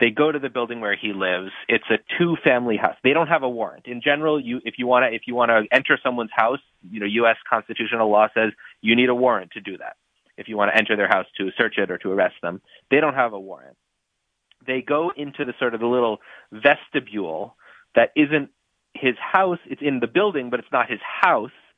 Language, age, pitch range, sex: English, 30-49, 110-130 Hz, male